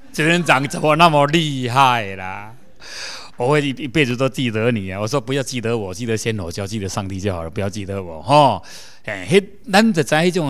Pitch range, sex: 140-225 Hz, male